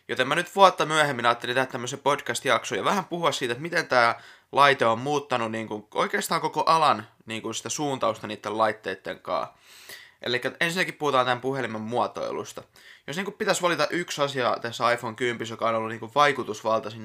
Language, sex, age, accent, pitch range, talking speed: Finnish, male, 20-39, native, 110-140 Hz, 185 wpm